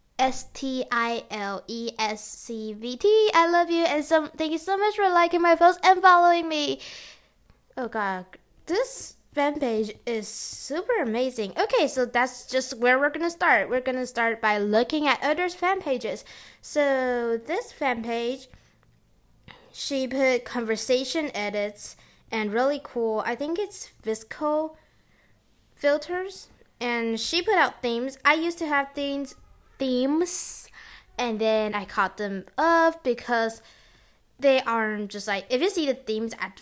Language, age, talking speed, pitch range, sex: English, 10-29, 145 wpm, 215-300 Hz, female